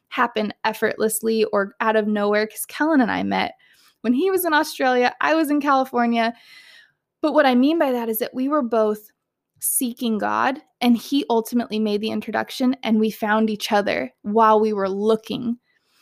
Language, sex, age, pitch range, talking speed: English, female, 20-39, 220-260 Hz, 180 wpm